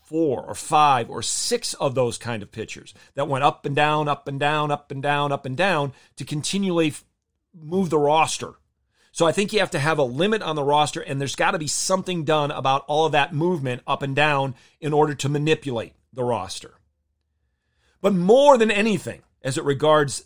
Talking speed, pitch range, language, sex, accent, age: 205 wpm, 130-175 Hz, English, male, American, 40-59